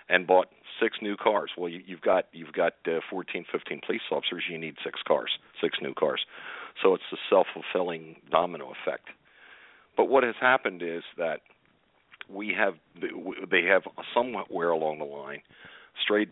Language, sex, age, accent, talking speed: English, male, 50-69, American, 170 wpm